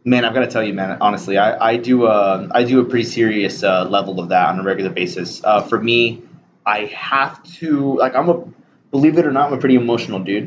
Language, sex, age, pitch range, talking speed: English, male, 20-39, 100-130 Hz, 260 wpm